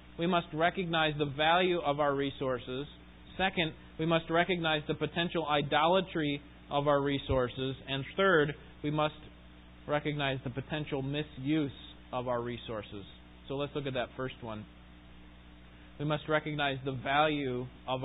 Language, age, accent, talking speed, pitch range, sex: English, 20-39, American, 140 wpm, 115-165 Hz, male